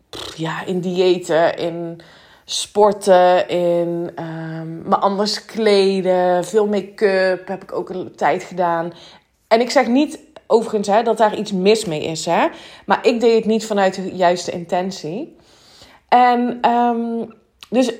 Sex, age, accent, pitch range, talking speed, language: female, 20-39, Dutch, 185-235 Hz, 130 wpm, Dutch